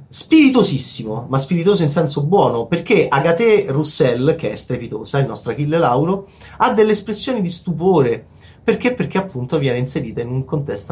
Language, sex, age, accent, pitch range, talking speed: Italian, male, 30-49, native, 120-170 Hz, 160 wpm